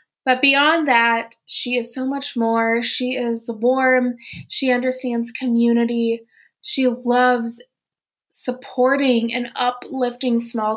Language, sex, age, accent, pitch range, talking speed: English, female, 20-39, American, 230-270 Hz, 110 wpm